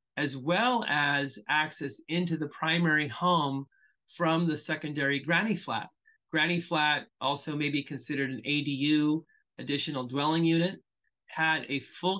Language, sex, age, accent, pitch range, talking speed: English, male, 30-49, American, 140-170 Hz, 135 wpm